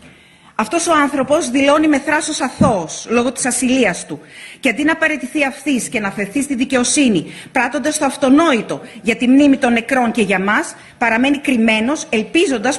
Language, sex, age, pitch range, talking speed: Greek, female, 40-59, 220-285 Hz, 165 wpm